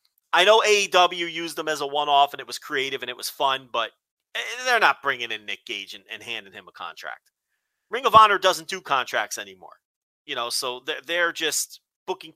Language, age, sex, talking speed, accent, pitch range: English, 30-49, male, 210 wpm, American, 160-220 Hz